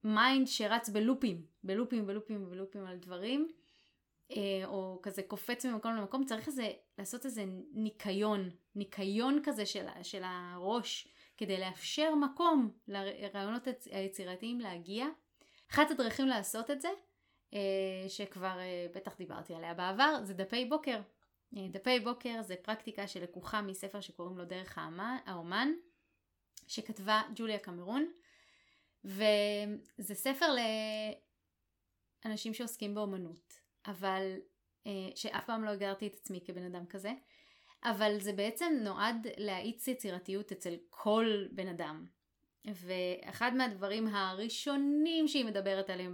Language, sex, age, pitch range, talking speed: Hebrew, female, 20-39, 195-245 Hz, 110 wpm